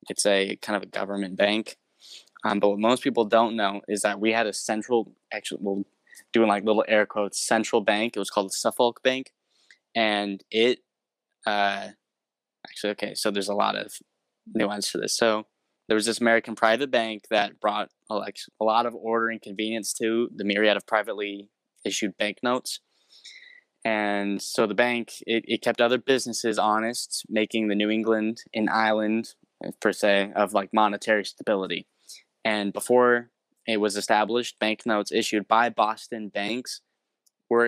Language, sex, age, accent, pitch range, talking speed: English, male, 10-29, American, 105-115 Hz, 165 wpm